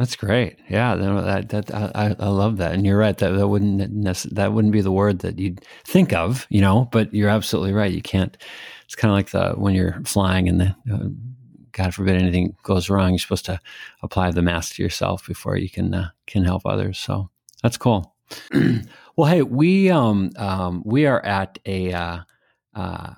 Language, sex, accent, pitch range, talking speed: English, male, American, 90-110 Hz, 200 wpm